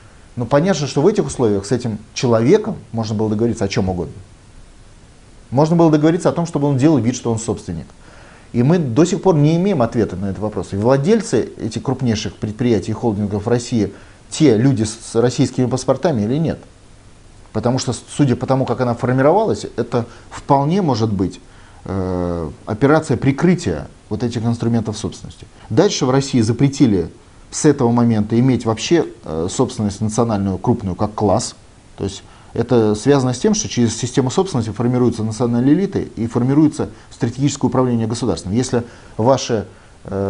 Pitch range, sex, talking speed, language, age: 105-135 Hz, male, 160 wpm, Russian, 30-49